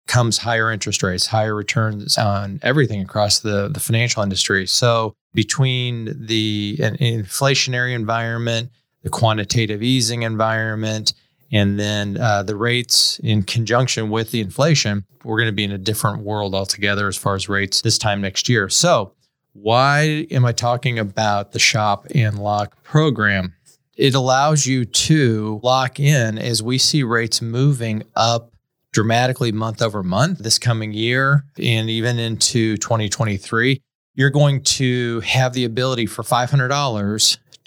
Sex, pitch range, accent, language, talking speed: male, 105-130 Hz, American, English, 145 wpm